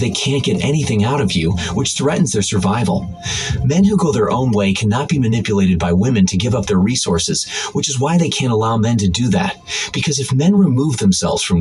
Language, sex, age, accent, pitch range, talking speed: English, male, 30-49, American, 100-150 Hz, 220 wpm